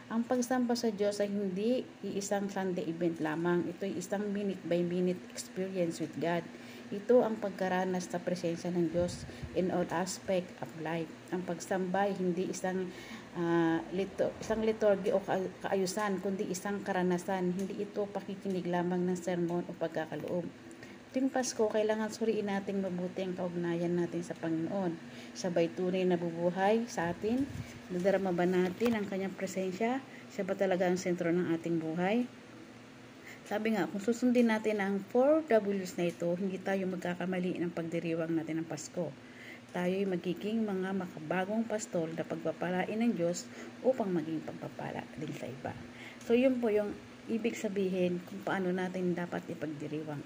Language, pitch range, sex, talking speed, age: Filipino, 170-205 Hz, female, 150 wpm, 40-59